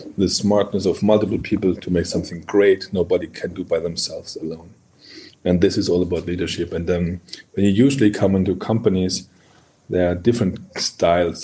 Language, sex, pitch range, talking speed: English, male, 90-105 Hz, 175 wpm